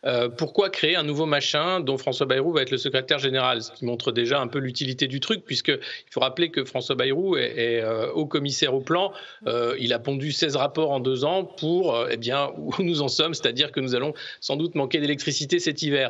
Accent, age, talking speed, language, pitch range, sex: French, 40-59, 240 wpm, French, 130-170 Hz, male